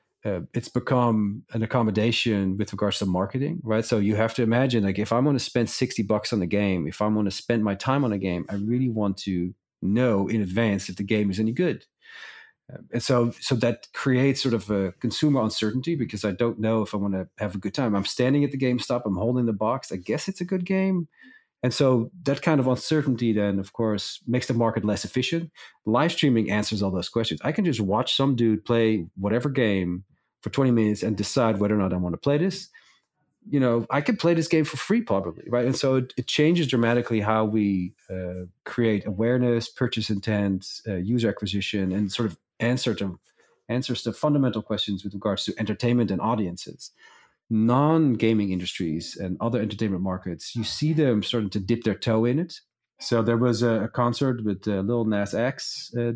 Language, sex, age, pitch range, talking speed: English, male, 40-59, 105-130 Hz, 215 wpm